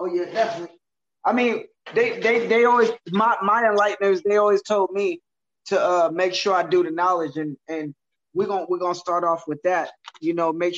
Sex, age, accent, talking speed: male, 20-39, American, 205 wpm